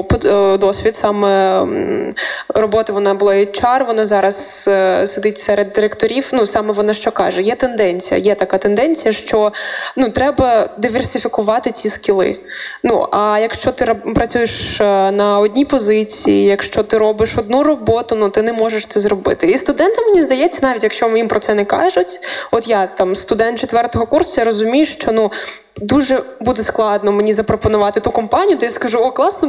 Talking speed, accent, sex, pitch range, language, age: 165 wpm, native, female, 205-260 Hz, Ukrainian, 20-39